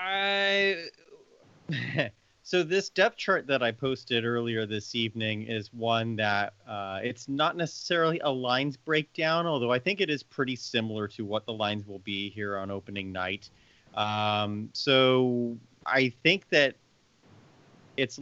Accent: American